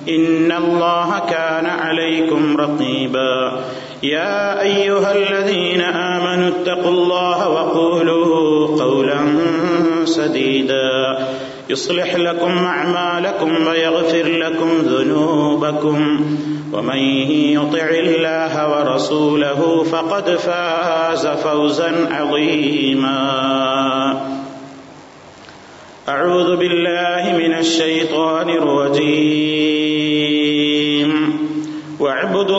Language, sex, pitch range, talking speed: Malayalam, male, 150-175 Hz, 65 wpm